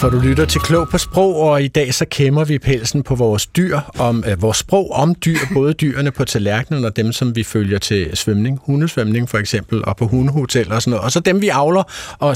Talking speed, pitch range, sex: 240 wpm, 110-140 Hz, male